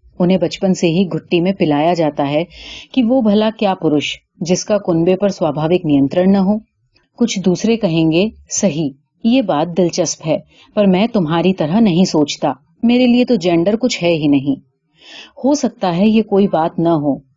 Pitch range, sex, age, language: 160-225 Hz, female, 30-49, Urdu